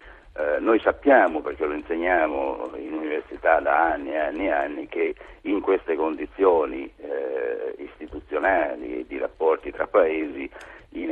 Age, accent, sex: 60-79, native, male